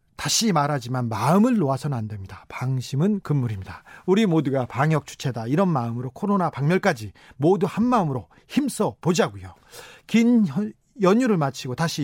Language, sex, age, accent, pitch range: Korean, male, 40-59, native, 130-190 Hz